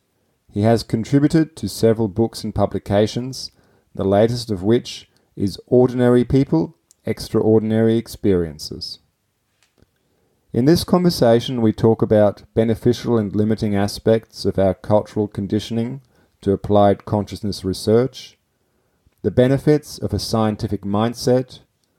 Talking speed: 110 wpm